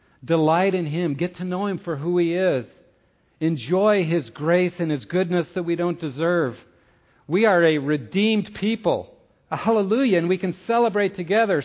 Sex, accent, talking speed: male, American, 165 wpm